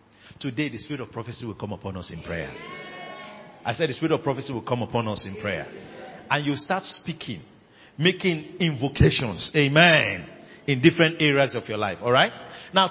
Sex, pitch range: male, 115-170 Hz